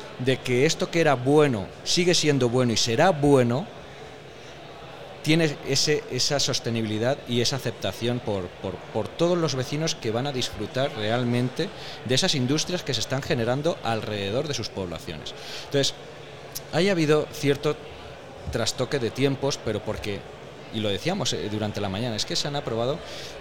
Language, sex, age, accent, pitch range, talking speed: Spanish, male, 30-49, Spanish, 115-150 Hz, 160 wpm